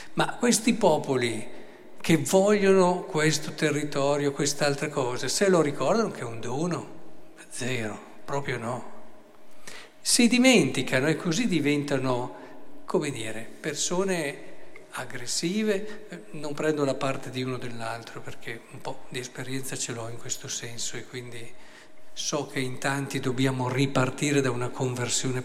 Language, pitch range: Italian, 135-175 Hz